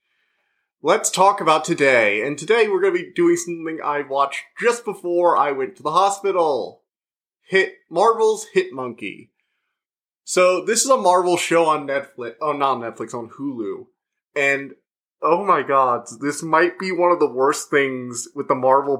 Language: English